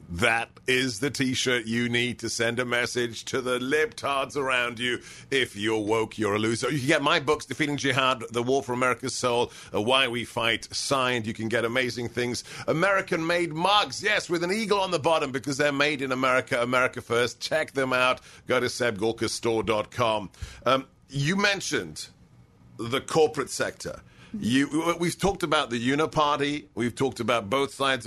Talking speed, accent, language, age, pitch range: 170 wpm, British, English, 50-69, 115-145 Hz